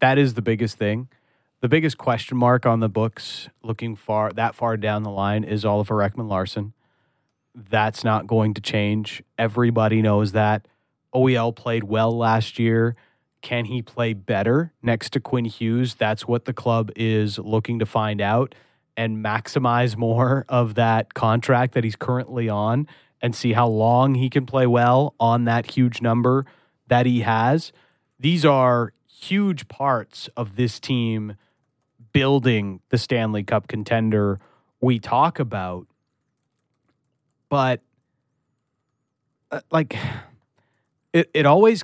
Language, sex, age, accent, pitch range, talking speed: English, male, 30-49, American, 115-135 Hz, 140 wpm